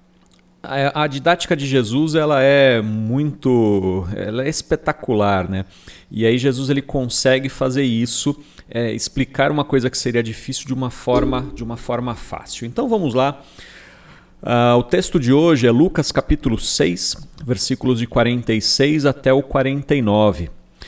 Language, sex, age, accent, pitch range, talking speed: Portuguese, male, 40-59, Brazilian, 110-150 Hz, 130 wpm